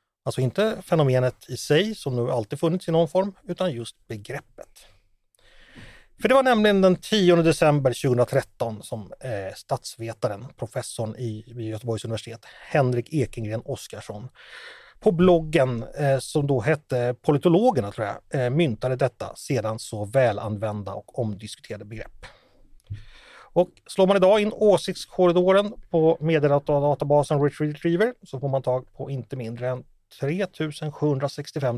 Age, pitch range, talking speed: 30-49, 125-180 Hz, 130 wpm